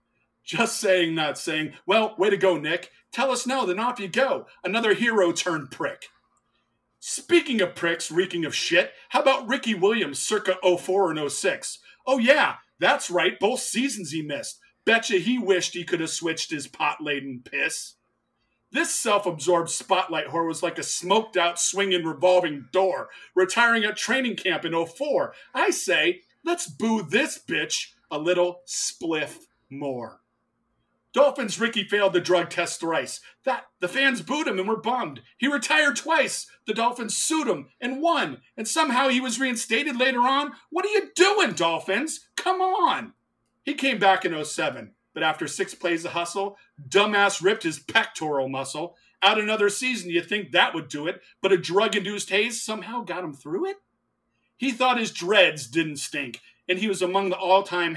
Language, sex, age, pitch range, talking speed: English, male, 40-59, 170-260 Hz, 170 wpm